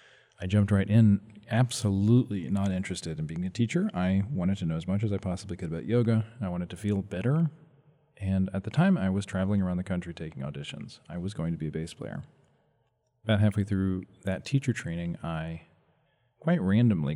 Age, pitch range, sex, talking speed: 40-59, 90-110 Hz, male, 200 wpm